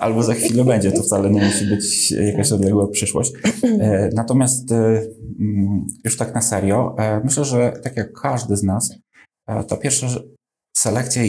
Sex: male